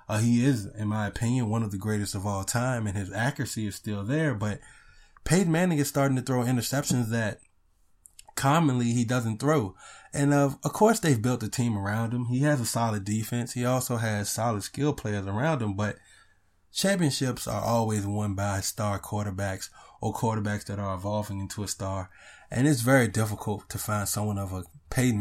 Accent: American